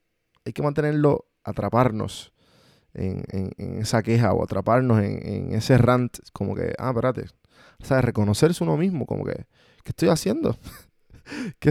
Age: 20-39